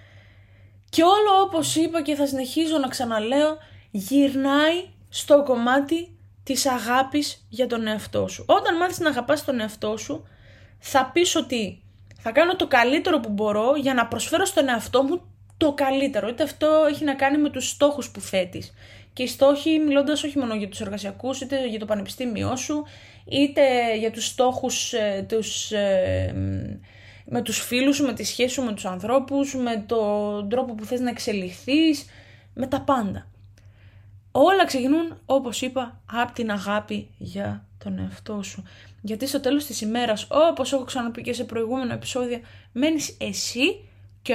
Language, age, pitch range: Greek, 20-39, 200-285 Hz